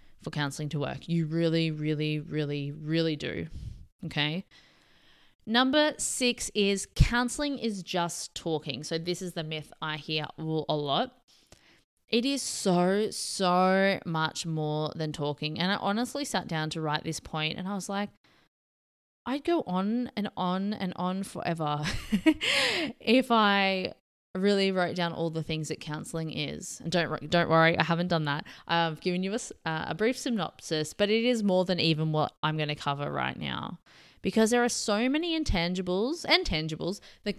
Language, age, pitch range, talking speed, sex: English, 20-39, 160-225 Hz, 165 wpm, female